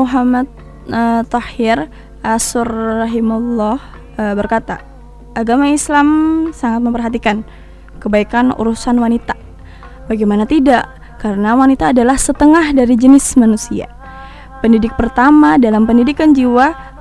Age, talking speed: 20-39, 100 wpm